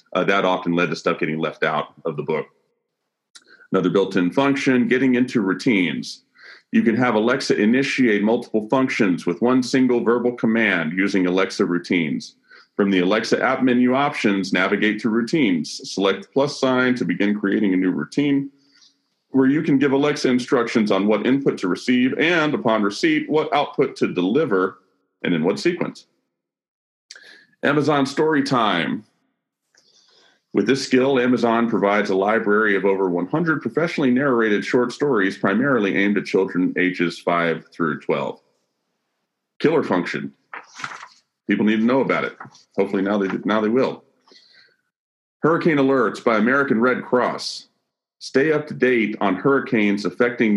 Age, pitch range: 40-59, 100-135 Hz